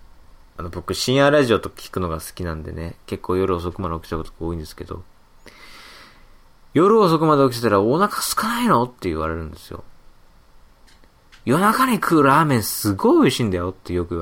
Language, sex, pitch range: Japanese, male, 90-130 Hz